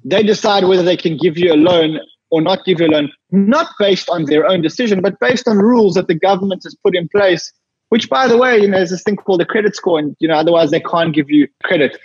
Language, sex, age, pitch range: English, male, 20-39, 155-210 Hz